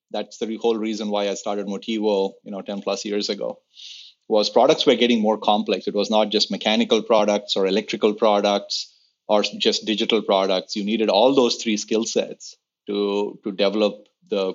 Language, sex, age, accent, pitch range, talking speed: English, male, 30-49, Indian, 100-115 Hz, 180 wpm